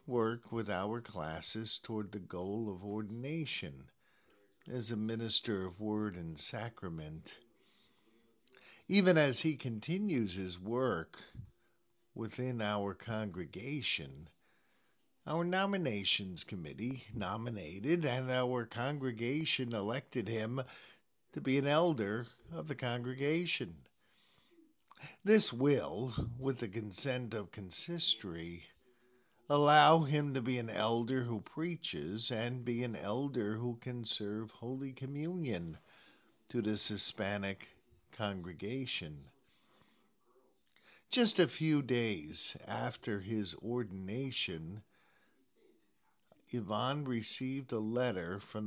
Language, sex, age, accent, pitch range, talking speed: English, male, 50-69, American, 105-130 Hz, 100 wpm